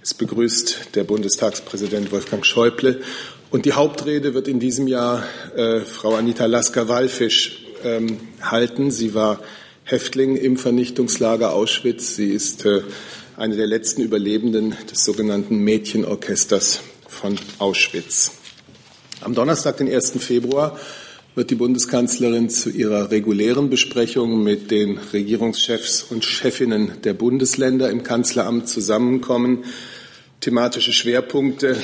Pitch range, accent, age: 110-125 Hz, German, 40-59